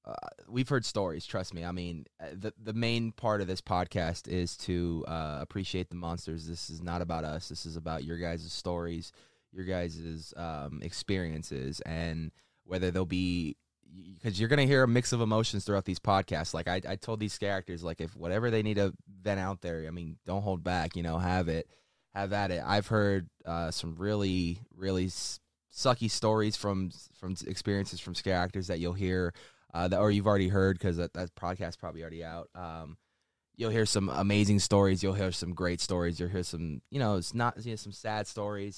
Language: English